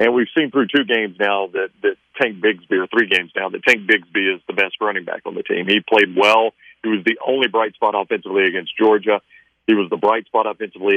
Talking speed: 240 wpm